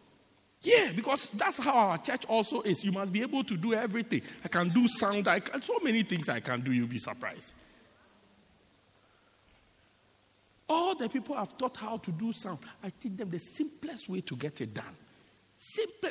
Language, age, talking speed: English, 50-69, 185 wpm